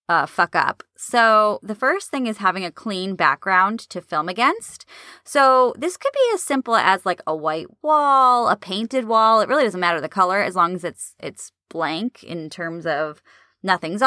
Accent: American